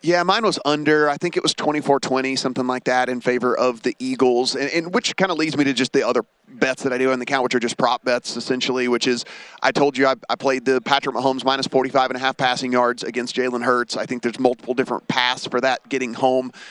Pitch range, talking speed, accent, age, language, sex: 120-135 Hz, 265 wpm, American, 30-49, English, male